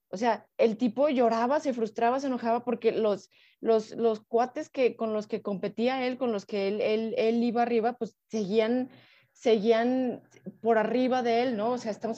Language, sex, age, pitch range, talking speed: Spanish, female, 30-49, 200-235 Hz, 190 wpm